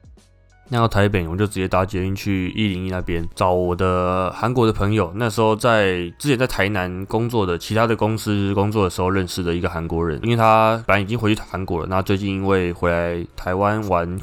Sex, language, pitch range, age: male, Chinese, 90-110 Hz, 20-39